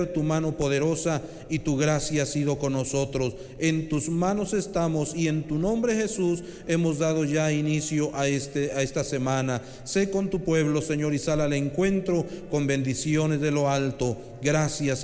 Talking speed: 170 wpm